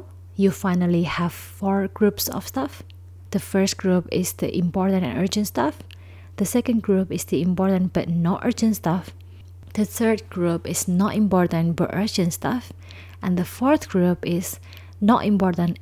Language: English